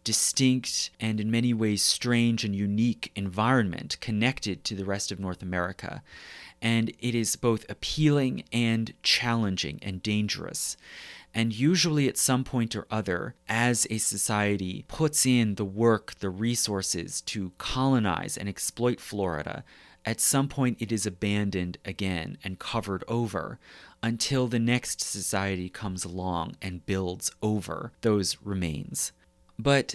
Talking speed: 135 wpm